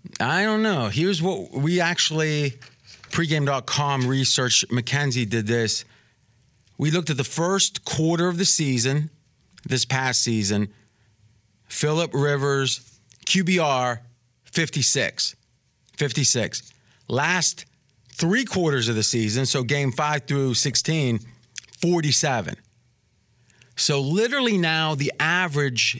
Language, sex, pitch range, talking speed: English, male, 120-160 Hz, 105 wpm